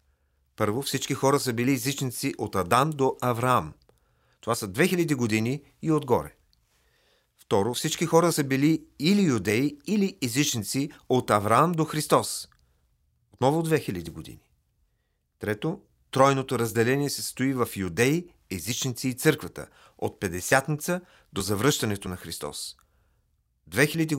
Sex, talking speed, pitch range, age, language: male, 120 wpm, 100-140 Hz, 40-59, Bulgarian